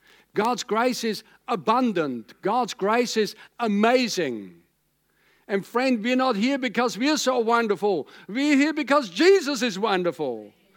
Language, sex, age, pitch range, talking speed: English, male, 60-79, 160-235 Hz, 135 wpm